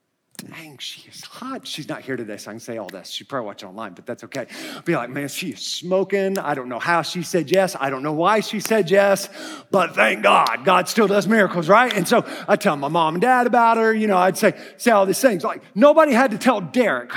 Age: 30-49